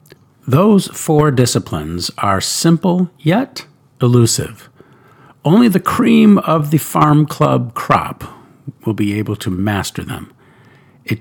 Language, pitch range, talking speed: English, 110-150 Hz, 120 wpm